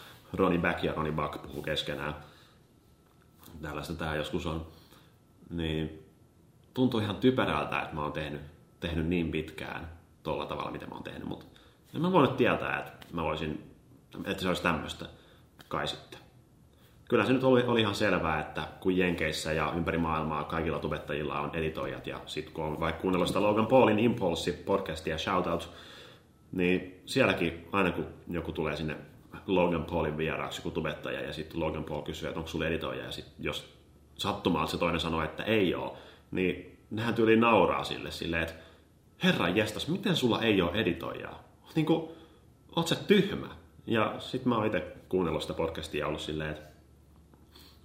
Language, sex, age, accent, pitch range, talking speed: Finnish, male, 30-49, native, 80-100 Hz, 165 wpm